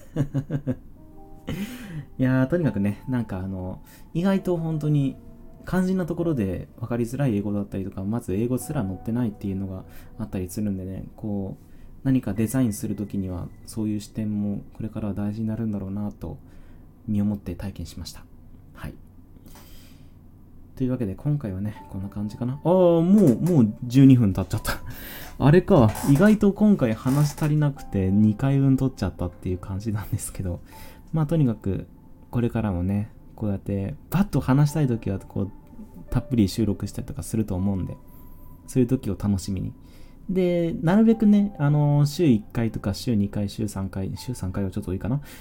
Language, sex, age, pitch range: Japanese, male, 20-39, 90-130 Hz